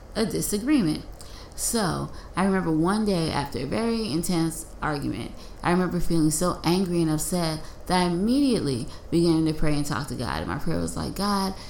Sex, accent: female, American